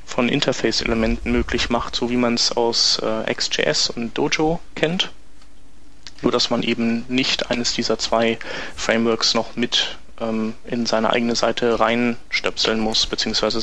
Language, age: German, 30-49